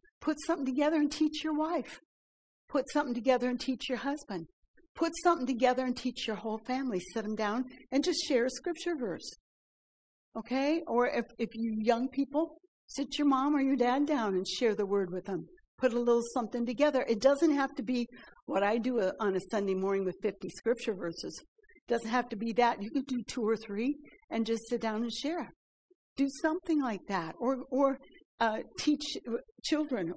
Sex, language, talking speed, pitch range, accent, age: female, English, 195 wpm, 200-275 Hz, American, 60-79